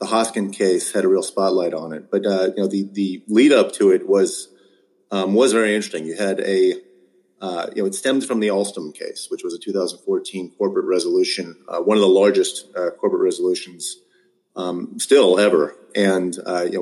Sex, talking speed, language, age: male, 200 wpm, English, 30-49